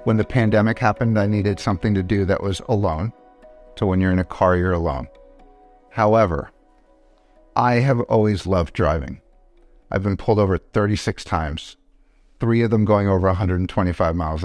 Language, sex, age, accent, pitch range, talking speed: German, male, 50-69, American, 95-125 Hz, 160 wpm